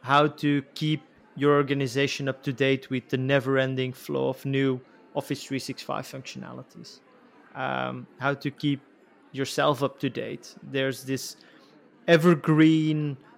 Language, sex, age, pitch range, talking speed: English, male, 30-49, 130-150 Hz, 125 wpm